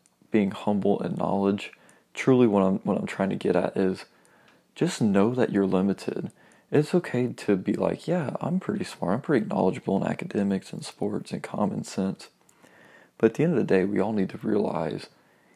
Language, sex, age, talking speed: English, male, 20-39, 195 wpm